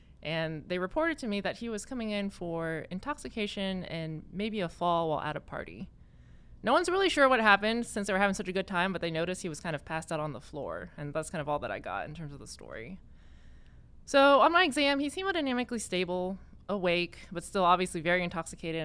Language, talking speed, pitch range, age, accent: English, 230 wpm, 155-200 Hz, 20-39, American